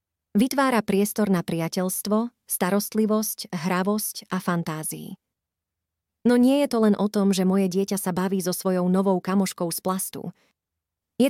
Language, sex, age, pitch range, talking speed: Slovak, female, 30-49, 175-215 Hz, 145 wpm